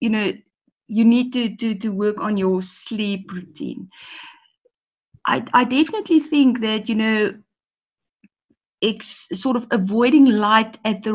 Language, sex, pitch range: English, female, 200-245 Hz